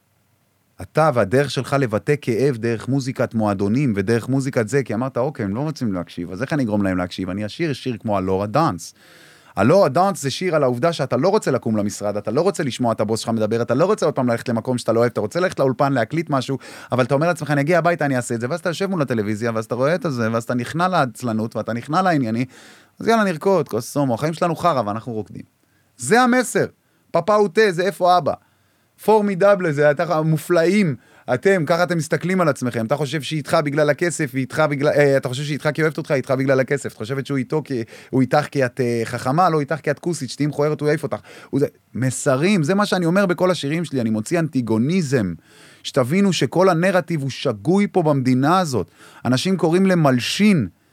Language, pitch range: Hebrew, 120-175 Hz